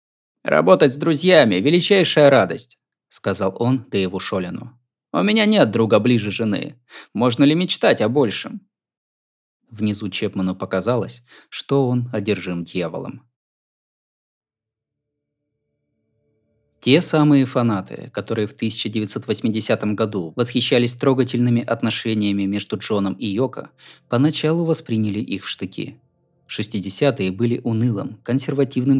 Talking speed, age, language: 105 wpm, 20-39, Russian